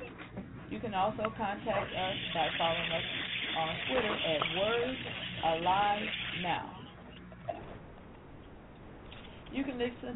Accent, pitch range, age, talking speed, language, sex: American, 155-195 Hz, 40-59, 100 wpm, English, female